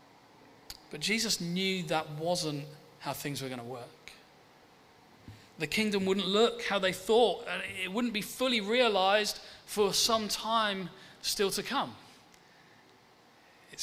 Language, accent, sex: English, British, male